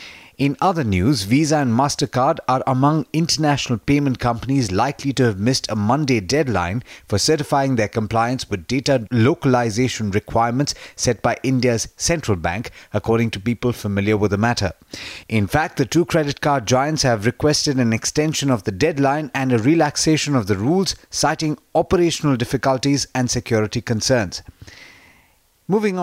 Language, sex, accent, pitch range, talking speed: English, male, Indian, 115-140 Hz, 150 wpm